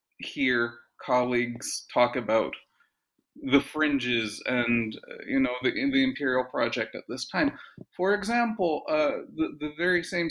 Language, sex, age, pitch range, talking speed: English, male, 40-59, 145-205 Hz, 135 wpm